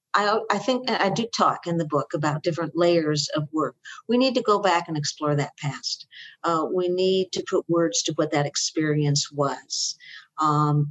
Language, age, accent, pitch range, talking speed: English, 50-69, American, 155-190 Hz, 195 wpm